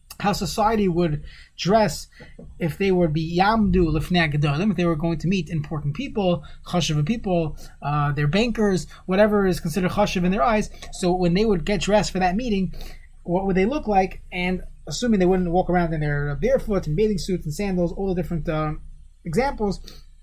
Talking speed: 185 wpm